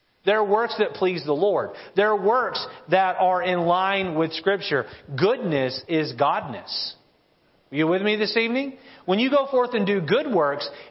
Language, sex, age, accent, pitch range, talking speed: English, male, 40-59, American, 180-225 Hz, 180 wpm